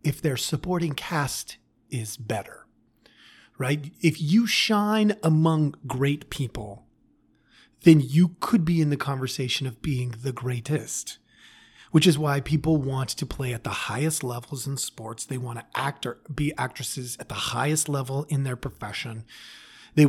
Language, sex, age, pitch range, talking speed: English, male, 30-49, 125-160 Hz, 155 wpm